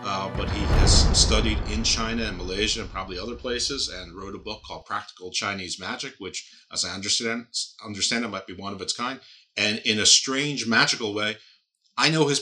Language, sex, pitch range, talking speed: English, male, 95-115 Hz, 205 wpm